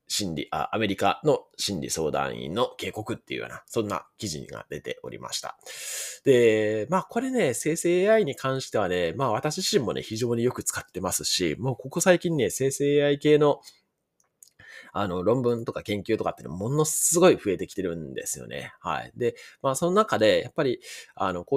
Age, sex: 20-39, male